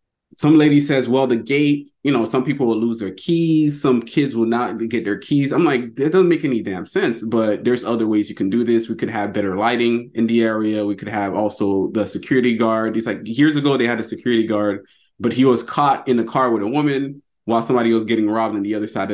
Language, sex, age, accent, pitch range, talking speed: English, male, 20-39, American, 110-140 Hz, 250 wpm